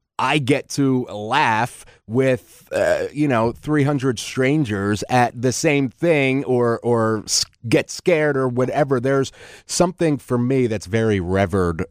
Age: 30-49